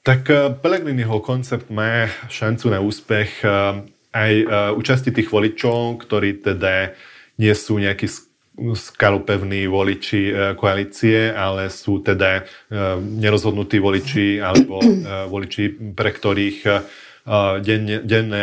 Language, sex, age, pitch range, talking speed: Slovak, male, 30-49, 100-115 Hz, 95 wpm